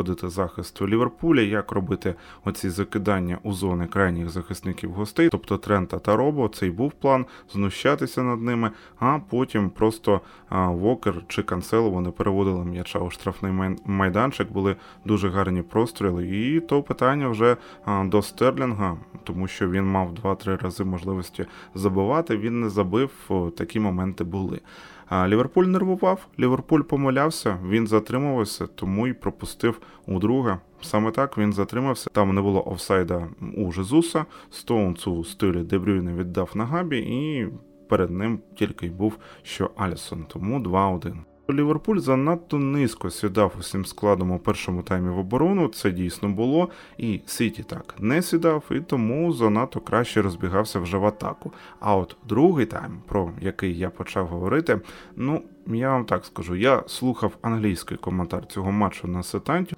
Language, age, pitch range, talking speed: Ukrainian, 20-39, 95-125 Hz, 150 wpm